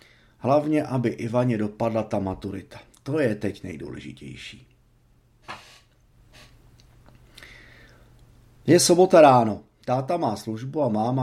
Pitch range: 105-130 Hz